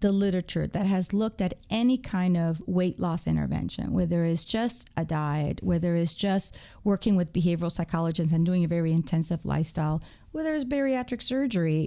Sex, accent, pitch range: female, American, 170-220 Hz